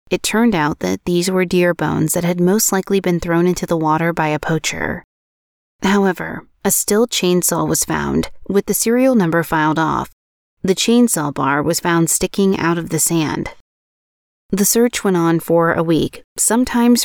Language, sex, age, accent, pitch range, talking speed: English, female, 30-49, American, 160-195 Hz, 175 wpm